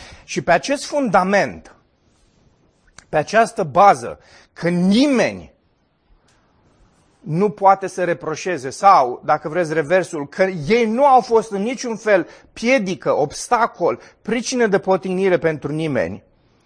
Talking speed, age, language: 115 wpm, 30-49, Romanian